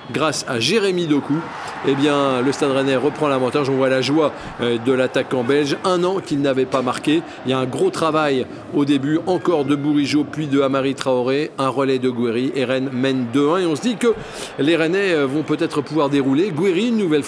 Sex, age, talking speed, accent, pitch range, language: male, 50-69, 210 wpm, French, 130-170 Hz, French